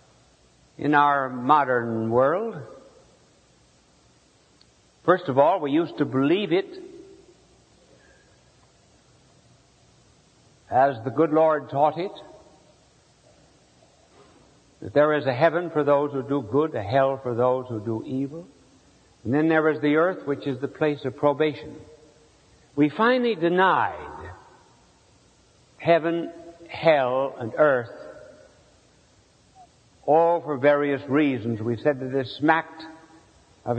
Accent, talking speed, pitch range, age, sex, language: American, 115 wpm, 130-170 Hz, 60-79, male, English